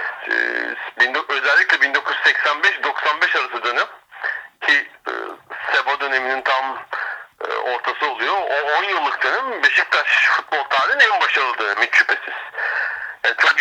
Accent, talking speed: native, 95 wpm